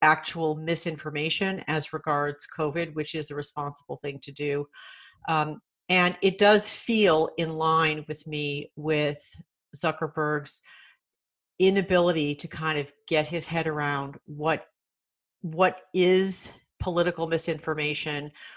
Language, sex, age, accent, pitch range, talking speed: English, female, 50-69, American, 145-160 Hz, 115 wpm